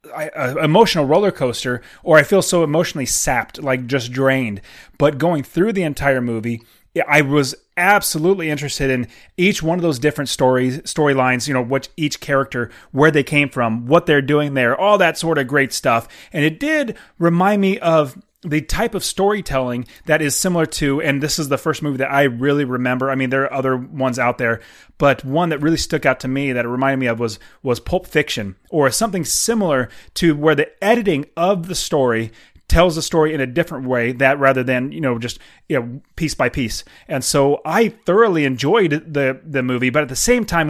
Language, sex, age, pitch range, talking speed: English, male, 30-49, 130-170 Hz, 210 wpm